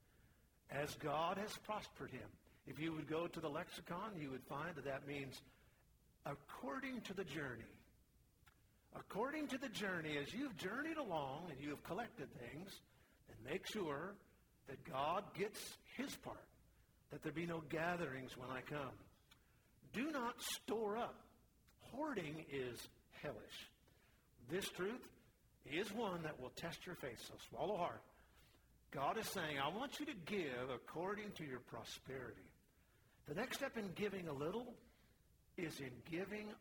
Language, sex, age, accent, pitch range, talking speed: English, male, 50-69, American, 130-185 Hz, 150 wpm